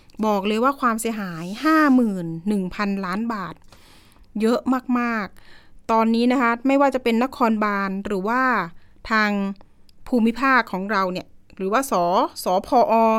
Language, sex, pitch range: Thai, female, 195-245 Hz